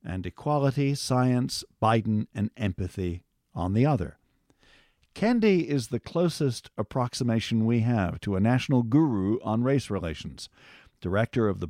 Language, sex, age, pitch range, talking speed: English, male, 50-69, 100-135 Hz, 135 wpm